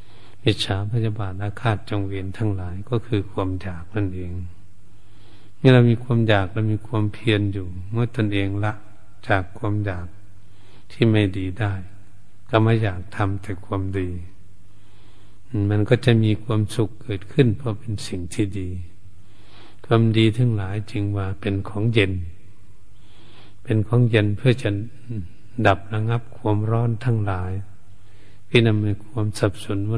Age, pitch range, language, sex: 70-89, 100-115 Hz, Thai, male